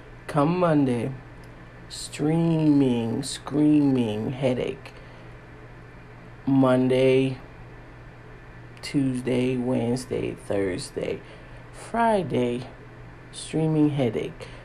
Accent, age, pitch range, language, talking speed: American, 50-69, 115-150 Hz, English, 50 wpm